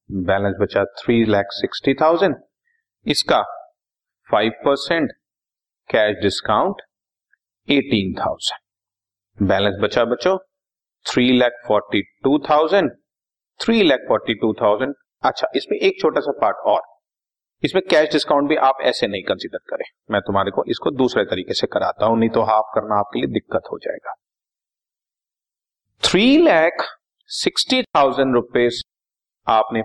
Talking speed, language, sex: 115 wpm, Hindi, male